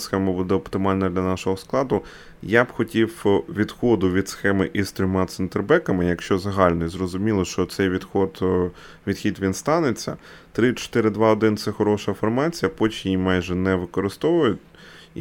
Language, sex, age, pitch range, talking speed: Ukrainian, male, 20-39, 90-110 Hz, 130 wpm